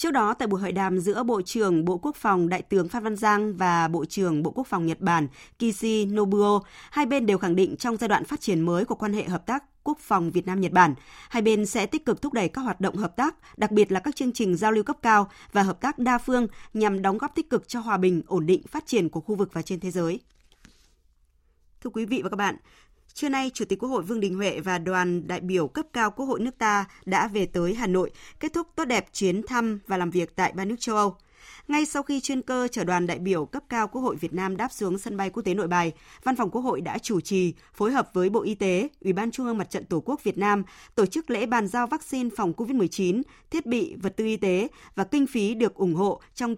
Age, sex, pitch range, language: 20-39, female, 185-240 Hz, Vietnamese